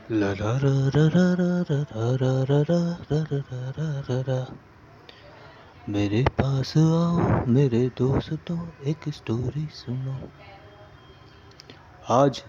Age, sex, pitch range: 30-49, male, 115-155 Hz